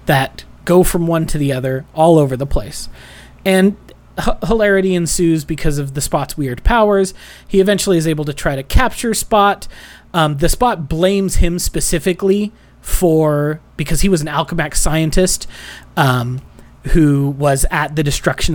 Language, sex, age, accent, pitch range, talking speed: English, male, 30-49, American, 130-180 Hz, 155 wpm